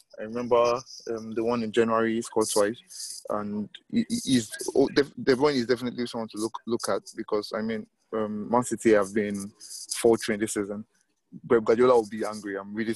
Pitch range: 110-120 Hz